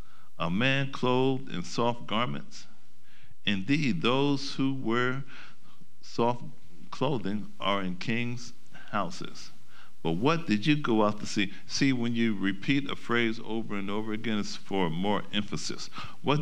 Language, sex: English, male